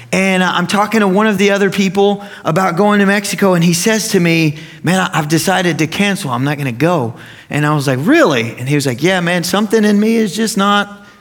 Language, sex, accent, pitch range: English, male, American, 145-200 Hz